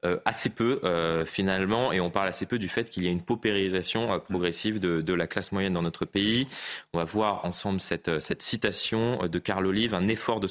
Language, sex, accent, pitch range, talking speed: French, male, French, 85-100 Hz, 235 wpm